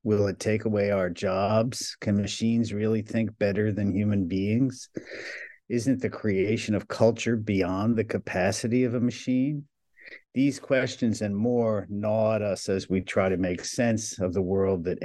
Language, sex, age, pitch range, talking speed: English, male, 50-69, 90-115 Hz, 170 wpm